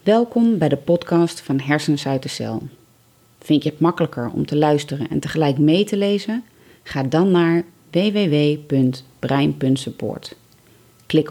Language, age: Dutch, 30-49